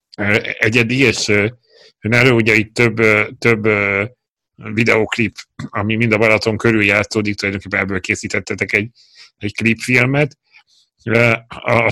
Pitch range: 110-120 Hz